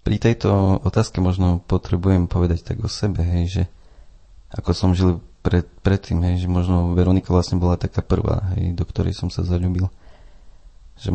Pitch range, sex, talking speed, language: 85-95 Hz, male, 165 wpm, Slovak